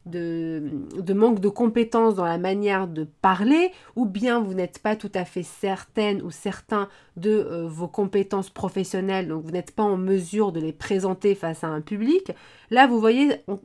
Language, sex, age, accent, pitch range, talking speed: French, female, 20-39, French, 170-215 Hz, 190 wpm